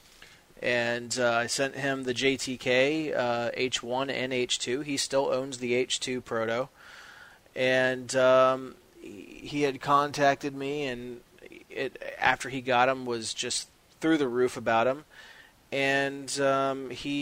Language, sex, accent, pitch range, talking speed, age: English, male, American, 115-135 Hz, 130 wpm, 30-49